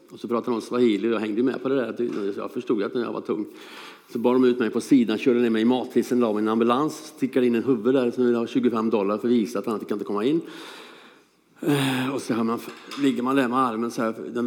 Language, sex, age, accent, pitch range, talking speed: Swedish, male, 50-69, Norwegian, 115-135 Hz, 275 wpm